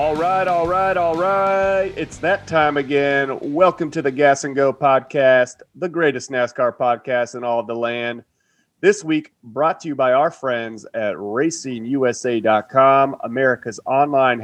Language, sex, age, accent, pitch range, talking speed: English, male, 30-49, American, 120-150 Hz, 160 wpm